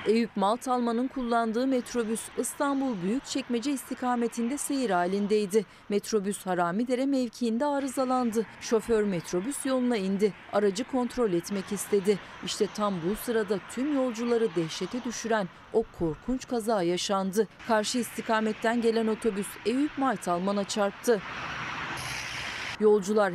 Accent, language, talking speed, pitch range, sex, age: native, Turkish, 110 wpm, 200-240 Hz, female, 40-59